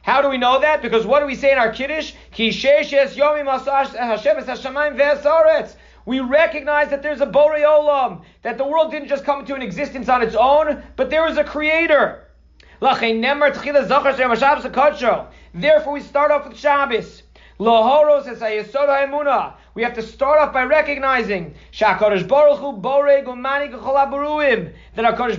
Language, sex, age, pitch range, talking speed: English, male, 30-49, 255-295 Hz, 125 wpm